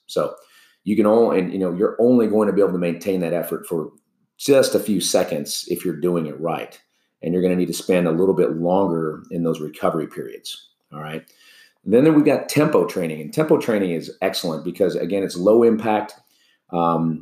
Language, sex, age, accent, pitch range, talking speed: English, male, 30-49, American, 85-95 Hz, 215 wpm